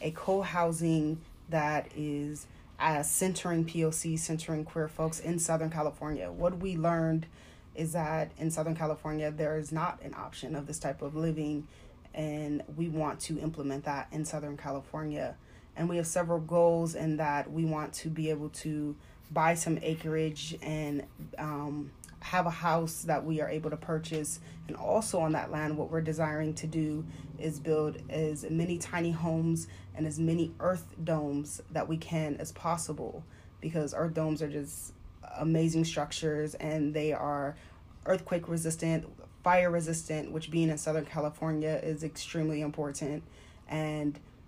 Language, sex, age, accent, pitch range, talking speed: English, female, 20-39, American, 150-165 Hz, 155 wpm